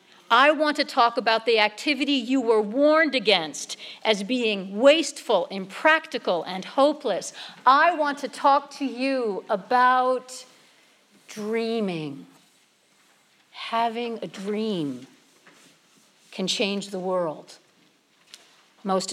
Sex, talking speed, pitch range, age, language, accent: female, 105 wpm, 205-270 Hz, 50-69, English, American